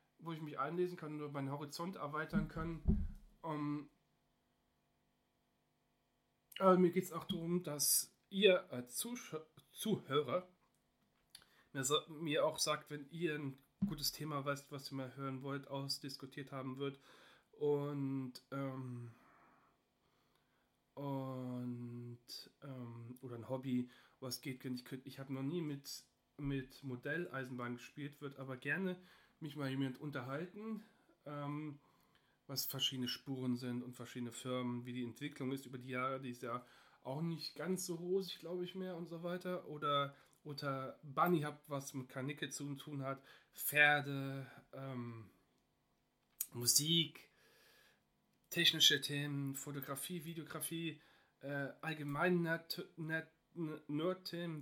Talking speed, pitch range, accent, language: 125 wpm, 135-165 Hz, German, German